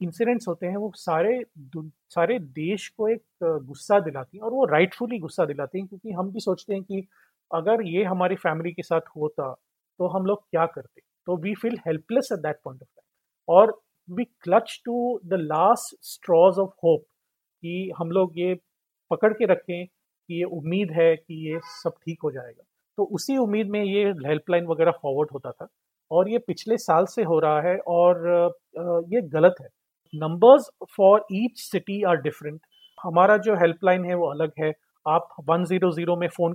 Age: 30-49